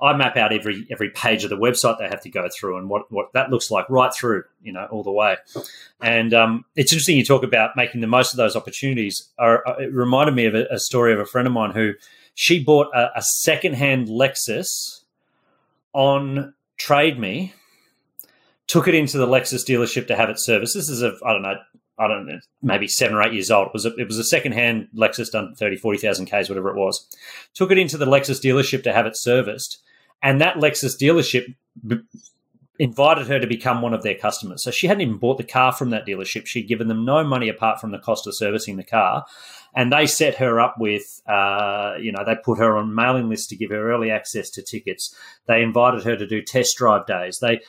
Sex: male